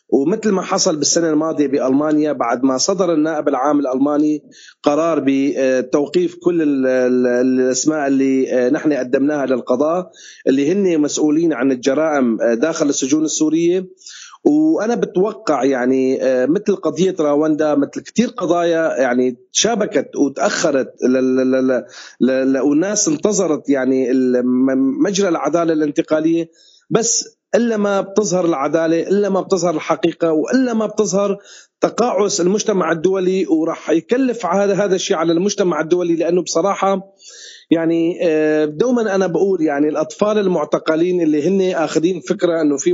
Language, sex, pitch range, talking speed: Arabic, male, 150-190 Hz, 120 wpm